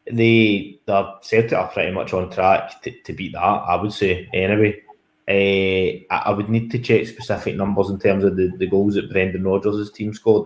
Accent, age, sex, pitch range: British, 20-39, male, 95-110 Hz